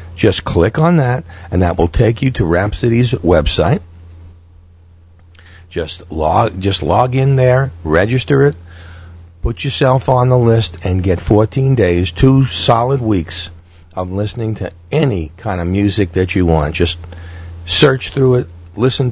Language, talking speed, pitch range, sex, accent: English, 150 wpm, 85-115 Hz, male, American